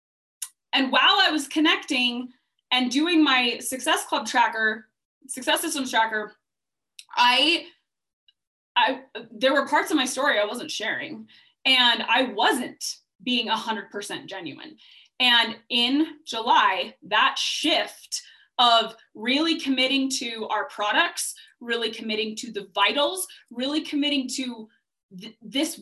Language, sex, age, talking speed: English, female, 20-39, 125 wpm